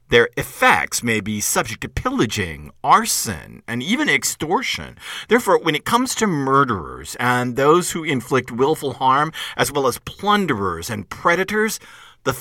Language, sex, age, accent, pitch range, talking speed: English, male, 50-69, American, 110-145 Hz, 145 wpm